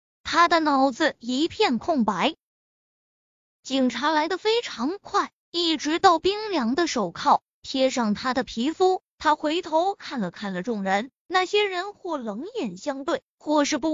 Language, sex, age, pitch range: Chinese, female, 20-39, 245-350 Hz